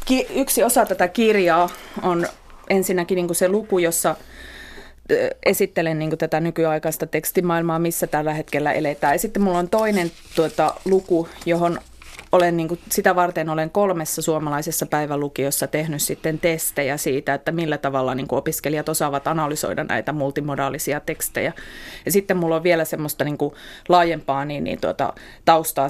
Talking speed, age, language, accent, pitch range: 140 wpm, 30-49, Finnish, native, 150-175 Hz